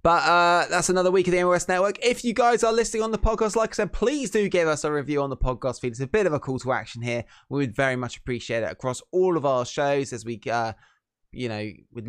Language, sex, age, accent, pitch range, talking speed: English, male, 20-39, British, 115-170 Hz, 280 wpm